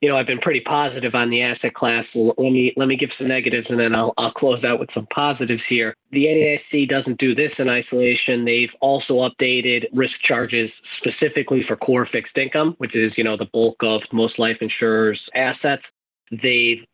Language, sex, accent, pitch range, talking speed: English, male, American, 115-135 Hz, 200 wpm